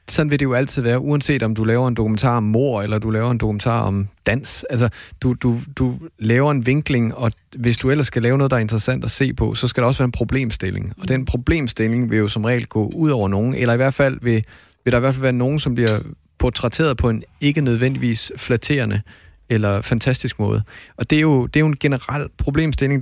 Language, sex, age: Danish, male, 30-49